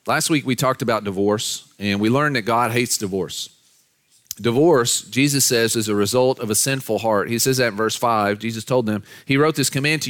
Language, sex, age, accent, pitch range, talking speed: English, male, 40-59, American, 110-140 Hz, 220 wpm